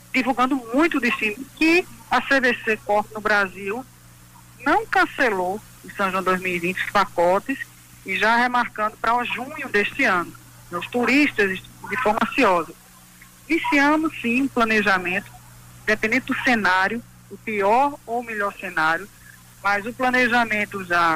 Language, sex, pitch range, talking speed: Portuguese, female, 185-245 Hz, 135 wpm